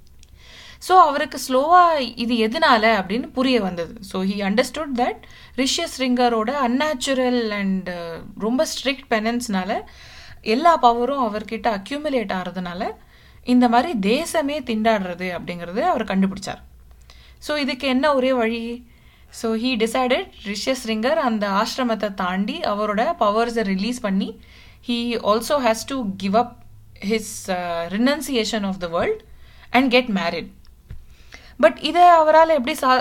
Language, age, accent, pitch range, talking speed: Tamil, 20-39, native, 195-255 Hz, 120 wpm